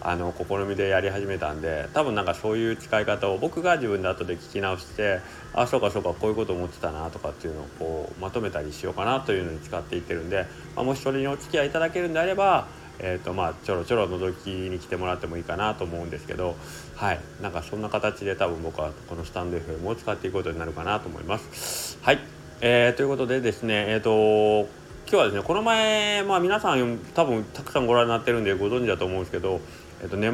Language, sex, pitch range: Japanese, male, 85-120 Hz